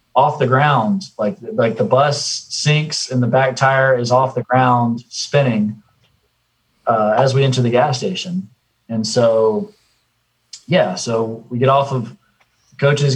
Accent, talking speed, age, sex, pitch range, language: American, 150 wpm, 30-49, male, 110-135 Hz, English